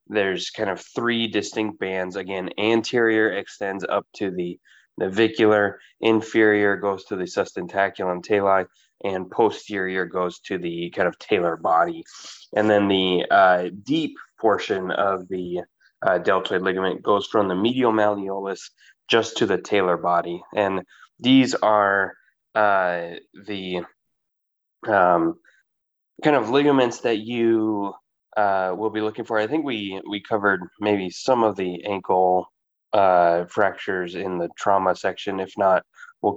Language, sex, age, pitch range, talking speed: English, male, 20-39, 95-110 Hz, 140 wpm